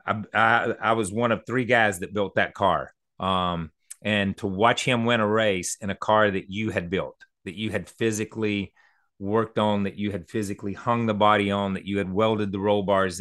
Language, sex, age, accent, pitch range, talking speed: English, male, 40-59, American, 95-110 Hz, 215 wpm